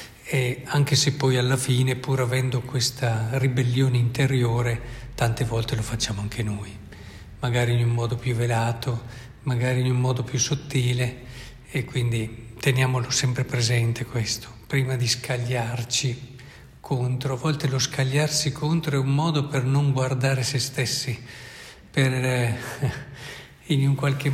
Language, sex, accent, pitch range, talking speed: Italian, male, native, 125-145 Hz, 140 wpm